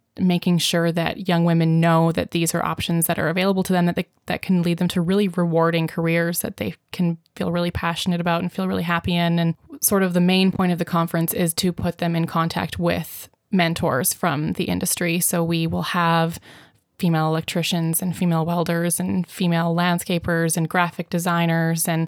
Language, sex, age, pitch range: English, female, 20-39, 165-175 Hz